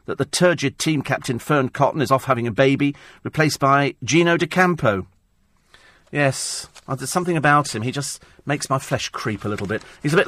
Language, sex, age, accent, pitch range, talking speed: English, male, 40-59, British, 120-175 Hz, 200 wpm